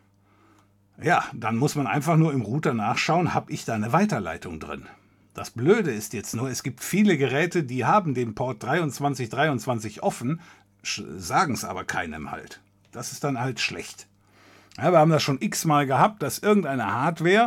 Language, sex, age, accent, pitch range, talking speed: German, male, 50-69, German, 105-155 Hz, 180 wpm